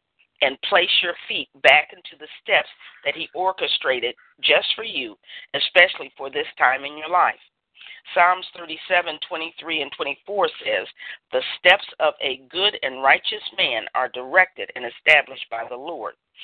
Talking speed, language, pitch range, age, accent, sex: 155 wpm, English, 130-185 Hz, 40-59, American, female